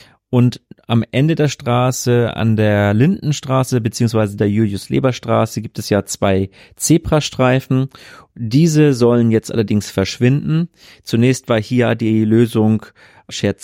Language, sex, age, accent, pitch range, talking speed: German, male, 30-49, German, 110-130 Hz, 120 wpm